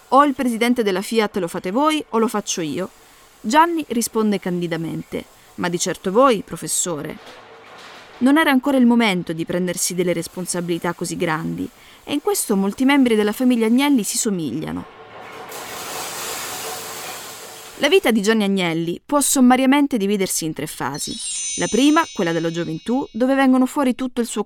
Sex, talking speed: female, 155 wpm